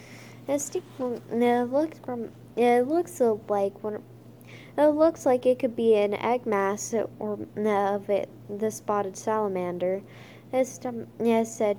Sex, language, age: female, English, 10-29